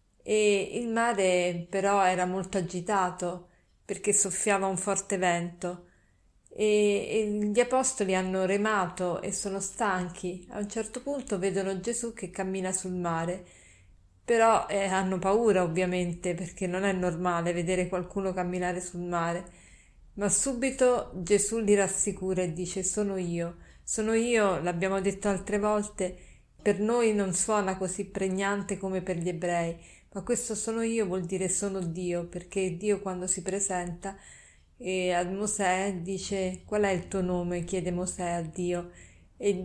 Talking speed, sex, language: 145 wpm, female, Italian